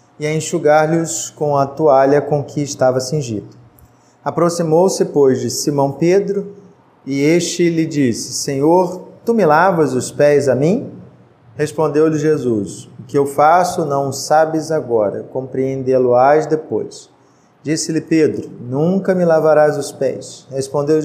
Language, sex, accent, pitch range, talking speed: Portuguese, male, Brazilian, 135-165 Hz, 135 wpm